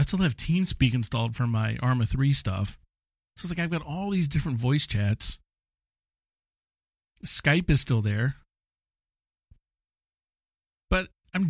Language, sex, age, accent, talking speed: English, male, 40-59, American, 135 wpm